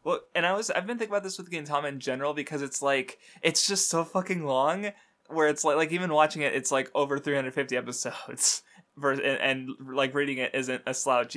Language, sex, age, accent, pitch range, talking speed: English, male, 20-39, American, 130-155 Hz, 215 wpm